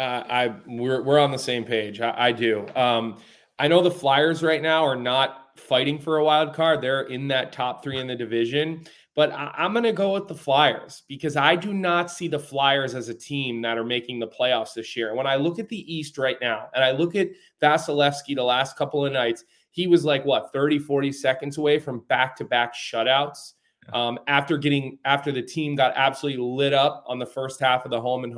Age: 20-39